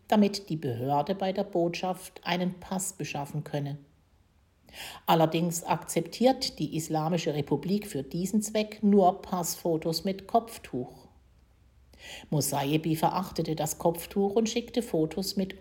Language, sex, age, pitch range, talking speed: German, female, 60-79, 150-190 Hz, 115 wpm